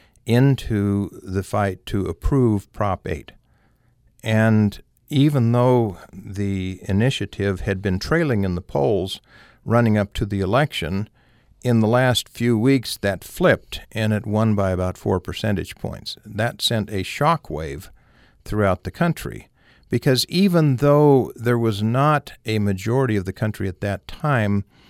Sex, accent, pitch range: male, American, 95-120 Hz